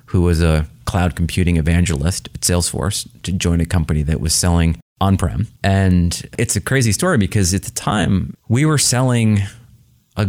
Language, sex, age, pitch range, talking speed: English, male, 30-49, 85-115 Hz, 170 wpm